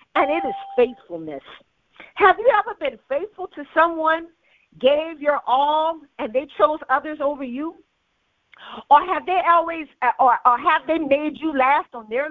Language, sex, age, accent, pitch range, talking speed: English, female, 40-59, American, 265-355 Hz, 160 wpm